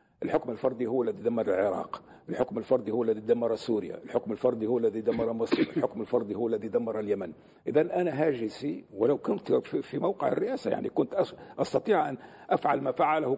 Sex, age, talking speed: male, 50-69, 175 wpm